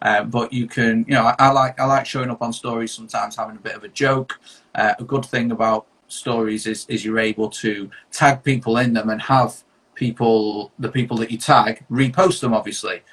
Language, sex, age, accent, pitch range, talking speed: English, male, 40-59, British, 110-125 Hz, 220 wpm